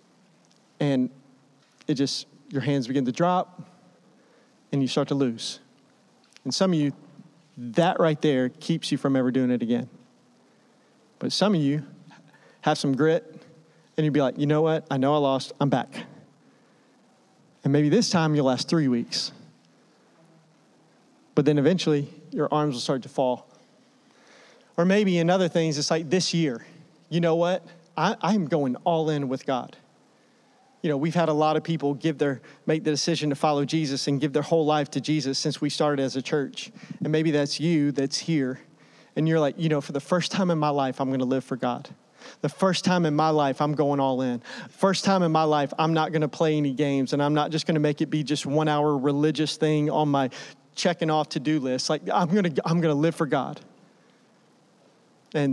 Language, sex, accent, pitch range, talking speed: English, male, American, 140-165 Hz, 205 wpm